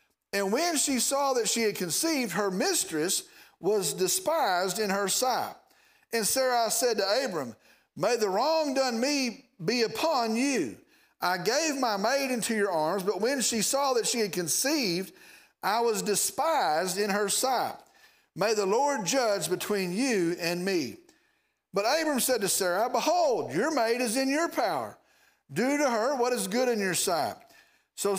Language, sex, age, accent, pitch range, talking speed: English, male, 50-69, American, 205-300 Hz, 170 wpm